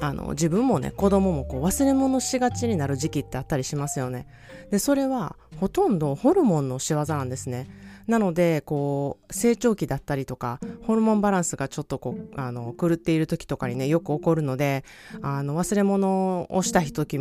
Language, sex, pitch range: Japanese, female, 140-185 Hz